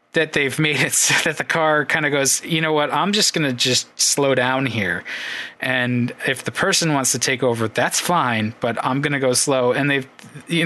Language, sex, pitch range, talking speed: English, male, 120-145 Hz, 230 wpm